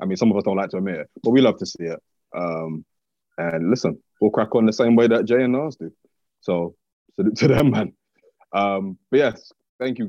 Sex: male